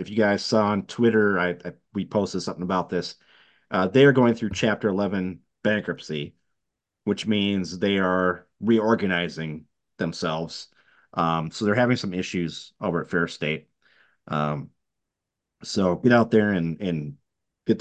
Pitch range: 85-105 Hz